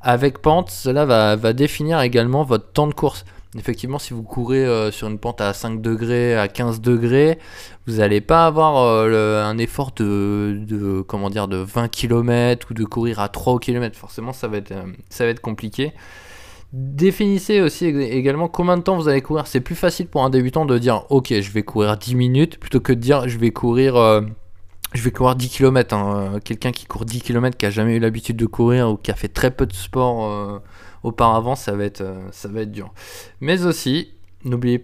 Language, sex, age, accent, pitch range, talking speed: French, male, 20-39, French, 105-135 Hz, 200 wpm